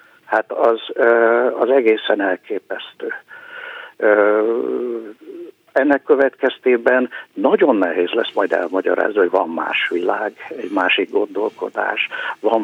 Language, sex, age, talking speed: Hungarian, male, 60-79, 95 wpm